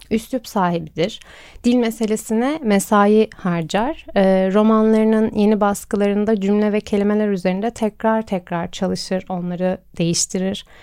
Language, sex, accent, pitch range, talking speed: Turkish, female, native, 195-230 Hz, 100 wpm